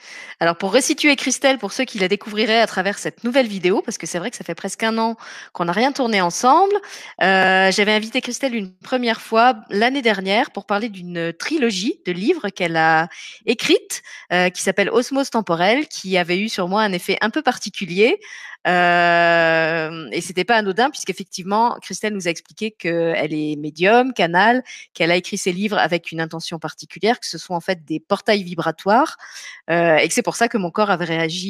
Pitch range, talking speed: 175-230 Hz, 200 wpm